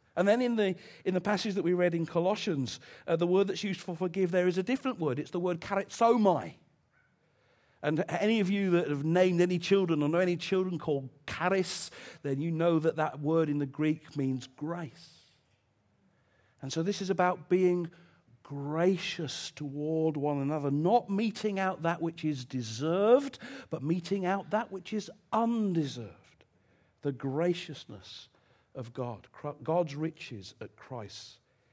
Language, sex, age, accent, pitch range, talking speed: English, male, 50-69, British, 125-180 Hz, 165 wpm